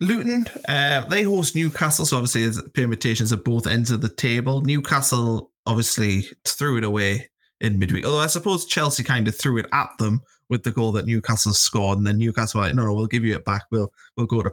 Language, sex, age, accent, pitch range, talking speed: English, male, 20-39, British, 110-135 Hz, 220 wpm